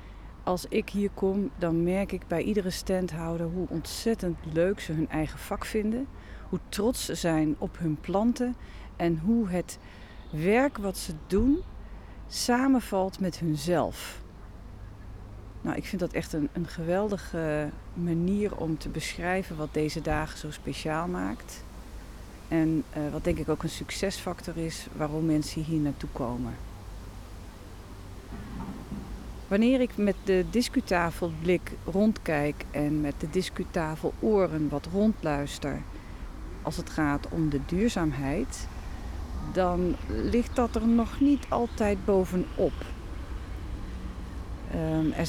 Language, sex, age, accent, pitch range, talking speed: Dutch, female, 40-59, Dutch, 130-195 Hz, 125 wpm